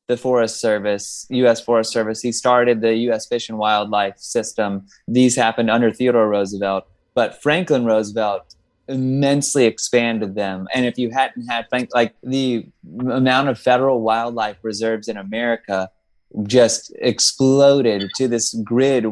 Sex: male